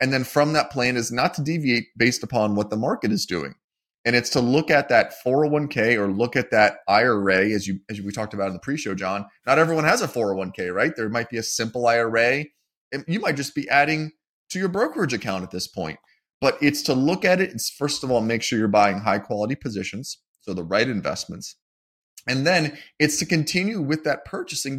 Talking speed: 220 wpm